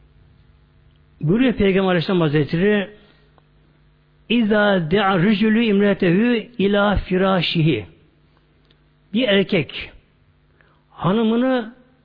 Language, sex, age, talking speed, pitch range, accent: Turkish, male, 60-79, 65 wpm, 140-200 Hz, native